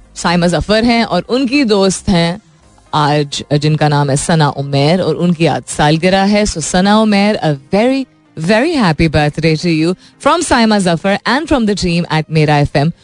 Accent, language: native, Hindi